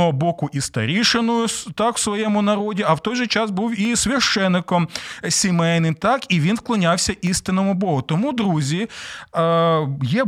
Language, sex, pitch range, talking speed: Ukrainian, male, 150-210 Hz, 145 wpm